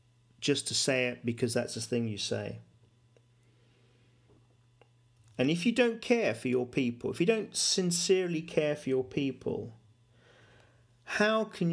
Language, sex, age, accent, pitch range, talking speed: English, male, 40-59, British, 115-145 Hz, 145 wpm